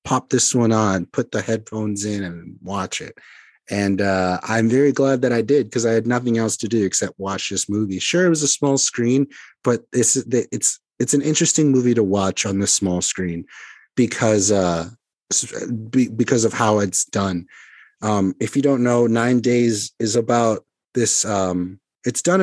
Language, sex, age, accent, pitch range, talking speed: English, male, 30-49, American, 100-125 Hz, 185 wpm